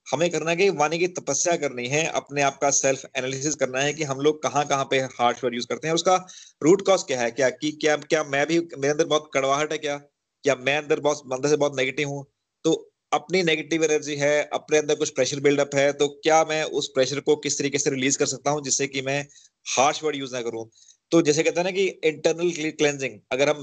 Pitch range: 130-155 Hz